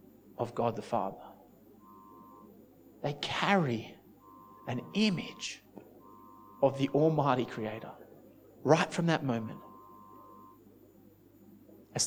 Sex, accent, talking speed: male, Australian, 85 wpm